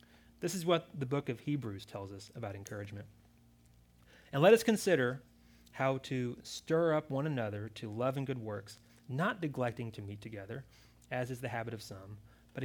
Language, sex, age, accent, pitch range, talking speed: English, male, 30-49, American, 110-145 Hz, 180 wpm